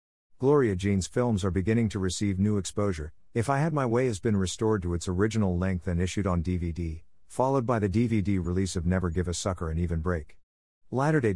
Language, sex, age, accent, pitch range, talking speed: English, male, 50-69, American, 90-110 Hz, 205 wpm